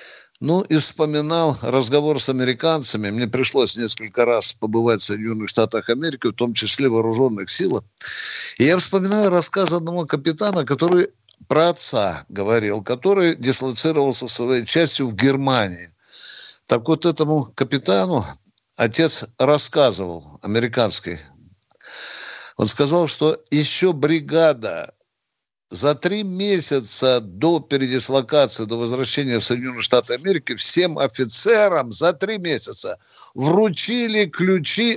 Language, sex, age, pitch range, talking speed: Russian, male, 60-79, 115-165 Hz, 115 wpm